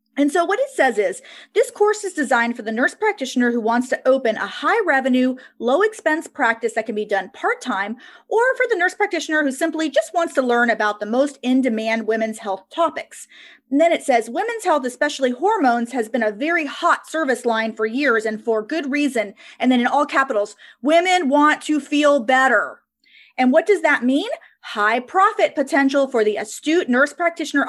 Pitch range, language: 230-320 Hz, English